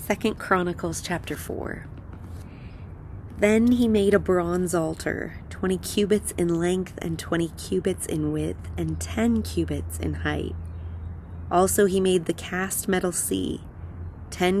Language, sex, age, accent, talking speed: English, female, 30-49, American, 130 wpm